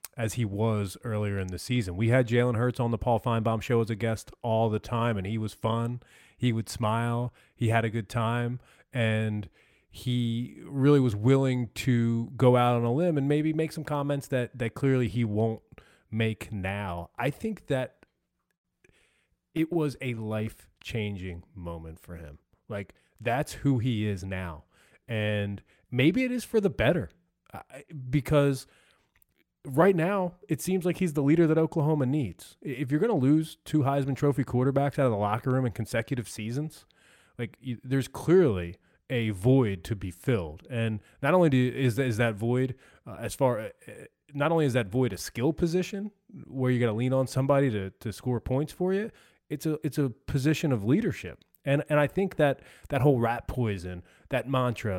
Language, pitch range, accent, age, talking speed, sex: English, 110-145 Hz, American, 30-49, 185 wpm, male